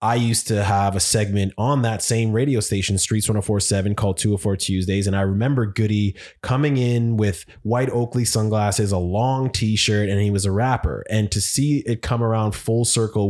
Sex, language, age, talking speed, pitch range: male, English, 20-39, 190 wpm, 100-115 Hz